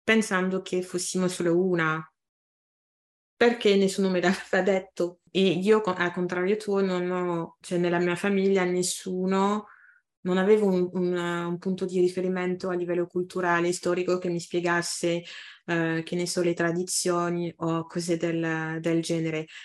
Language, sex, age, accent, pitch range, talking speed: Italian, female, 30-49, native, 170-190 Hz, 145 wpm